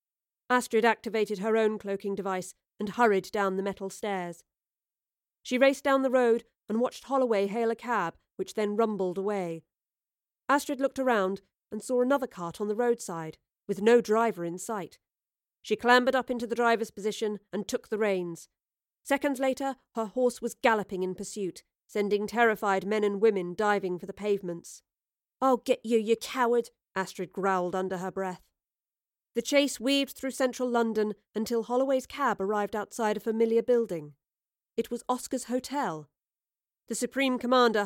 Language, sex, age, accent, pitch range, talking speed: English, female, 40-59, British, 200-245 Hz, 160 wpm